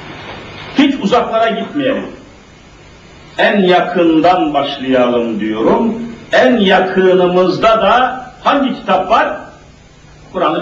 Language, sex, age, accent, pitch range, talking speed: Turkish, male, 50-69, native, 185-265 Hz, 80 wpm